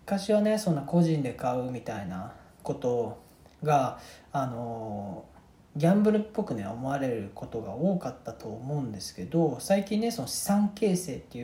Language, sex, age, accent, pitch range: Japanese, male, 40-59, native, 125-170 Hz